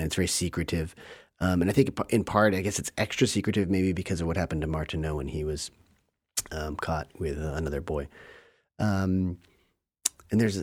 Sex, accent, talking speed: male, American, 180 wpm